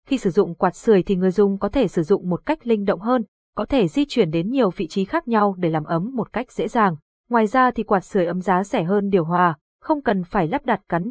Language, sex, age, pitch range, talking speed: Vietnamese, female, 20-39, 185-235 Hz, 275 wpm